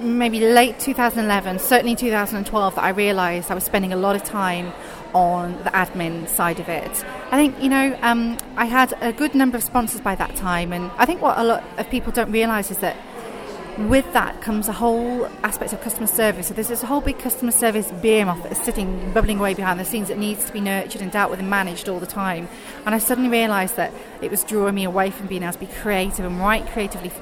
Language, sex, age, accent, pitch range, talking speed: English, female, 30-49, British, 190-235 Hz, 235 wpm